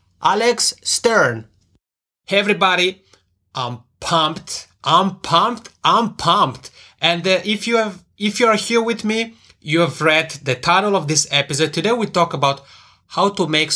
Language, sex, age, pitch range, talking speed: English, male, 30-49, 130-175 Hz, 150 wpm